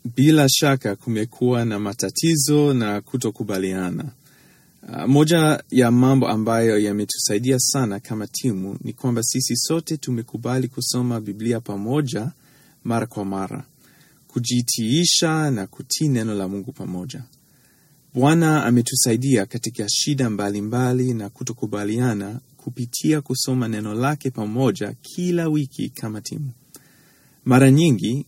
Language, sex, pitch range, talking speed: Swahili, male, 115-140 Hz, 110 wpm